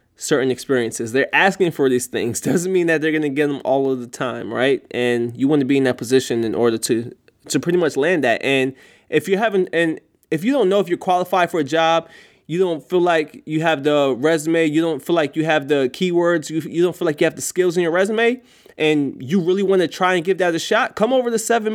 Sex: male